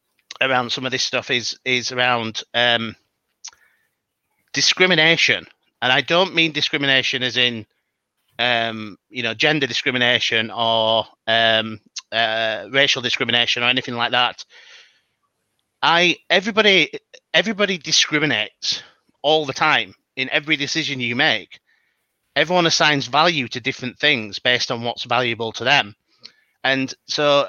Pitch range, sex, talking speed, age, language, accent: 120-155 Hz, male, 125 wpm, 30-49, English, British